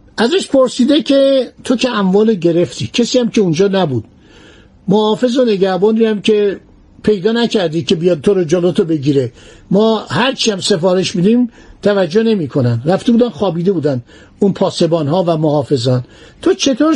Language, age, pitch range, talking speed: Persian, 60-79, 165-235 Hz, 155 wpm